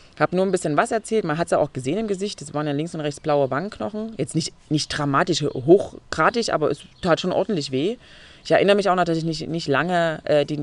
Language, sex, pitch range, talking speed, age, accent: German, female, 145-190 Hz, 260 wpm, 30-49, German